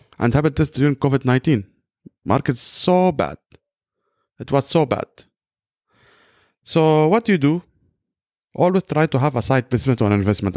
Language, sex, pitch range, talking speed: English, male, 115-155 Hz, 165 wpm